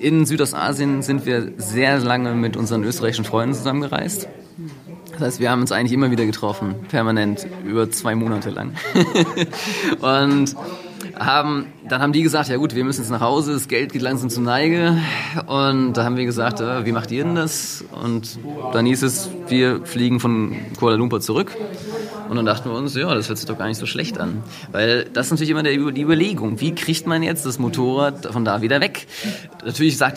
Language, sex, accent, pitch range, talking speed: German, male, German, 115-155 Hz, 195 wpm